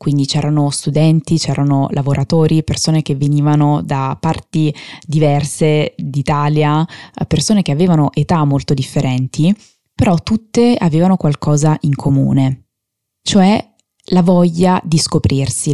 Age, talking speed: 20-39, 110 wpm